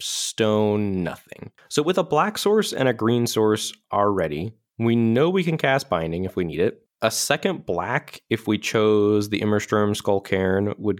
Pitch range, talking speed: 95-115 Hz, 180 wpm